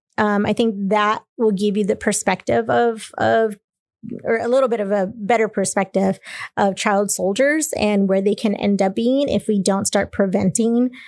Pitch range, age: 170-225 Hz, 30-49